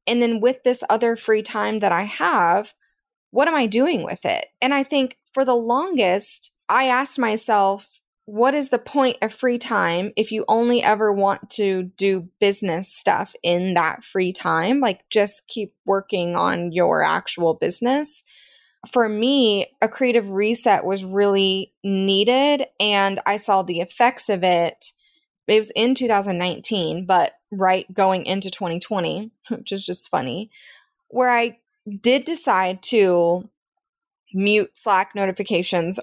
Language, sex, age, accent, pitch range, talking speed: English, female, 20-39, American, 185-235 Hz, 150 wpm